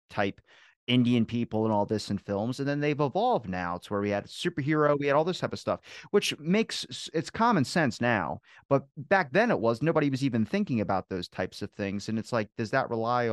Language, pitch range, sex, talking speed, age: English, 100-135 Hz, male, 230 wpm, 30-49